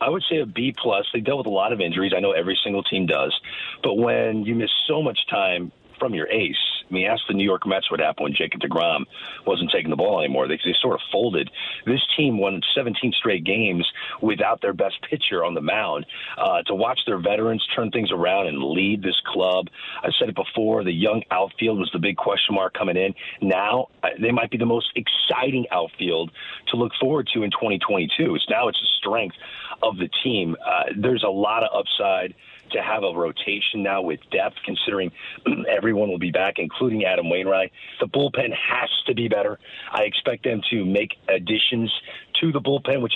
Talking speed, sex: 205 wpm, male